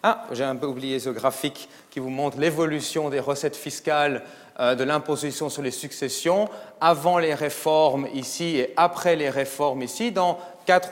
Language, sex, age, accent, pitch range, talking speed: French, male, 30-49, French, 125-160 Hz, 165 wpm